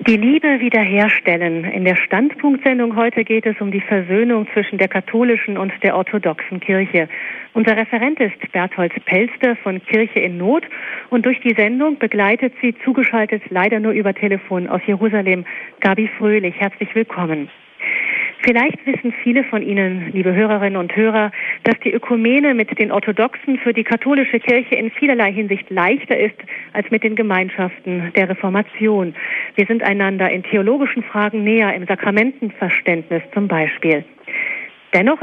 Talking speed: 150 wpm